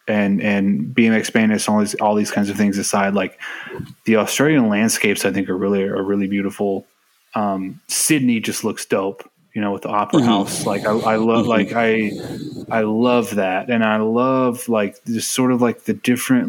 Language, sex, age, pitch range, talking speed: English, male, 20-39, 105-130 Hz, 195 wpm